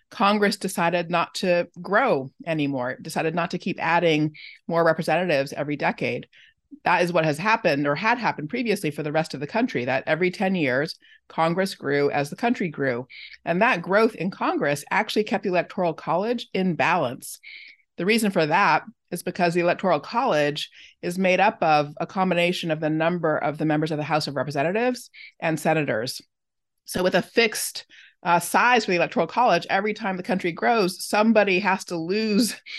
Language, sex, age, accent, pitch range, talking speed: English, female, 30-49, American, 160-200 Hz, 180 wpm